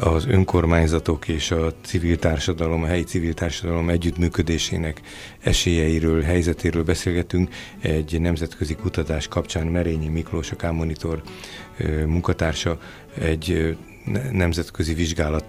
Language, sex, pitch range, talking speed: Hungarian, male, 80-90 Hz, 100 wpm